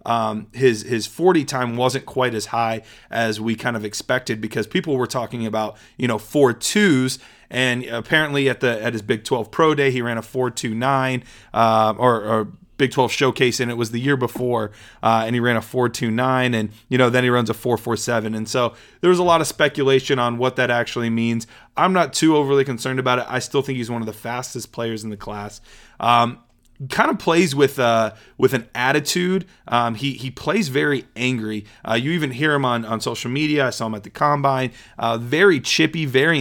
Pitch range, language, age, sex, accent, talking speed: 115-145 Hz, English, 30-49, male, American, 225 wpm